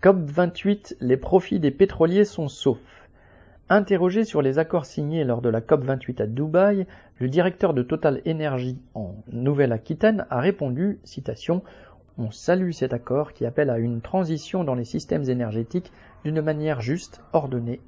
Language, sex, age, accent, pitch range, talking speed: French, male, 40-59, French, 125-180 Hz, 150 wpm